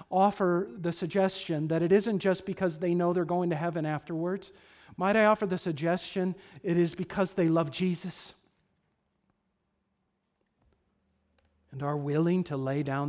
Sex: male